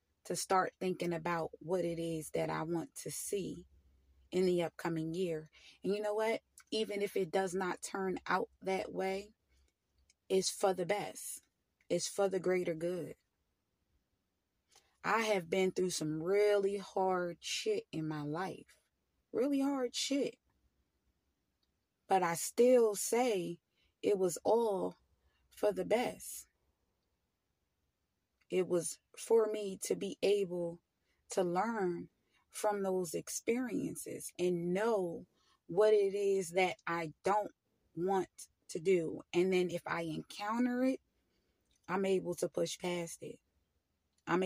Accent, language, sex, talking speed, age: American, English, female, 130 wpm, 20-39